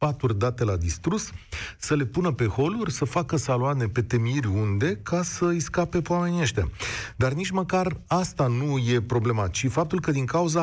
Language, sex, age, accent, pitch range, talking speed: Romanian, male, 40-59, native, 115-170 Hz, 180 wpm